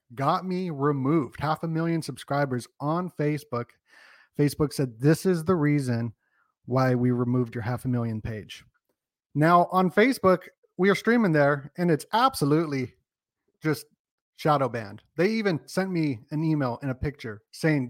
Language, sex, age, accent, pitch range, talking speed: English, male, 30-49, American, 125-165 Hz, 155 wpm